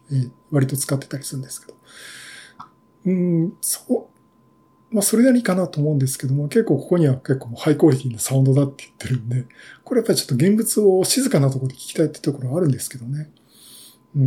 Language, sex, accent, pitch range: Japanese, male, native, 130-165 Hz